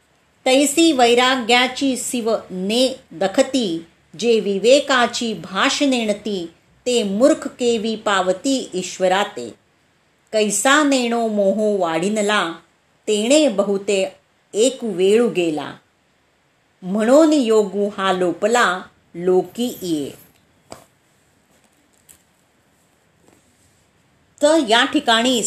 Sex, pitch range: female, 195-260 Hz